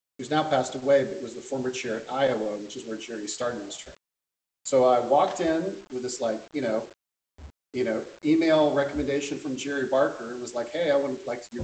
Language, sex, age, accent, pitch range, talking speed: English, male, 40-59, American, 115-140 Hz, 220 wpm